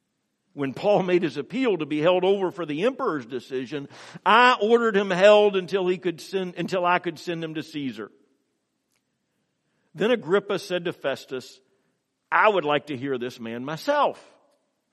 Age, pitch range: 50-69, 155-225 Hz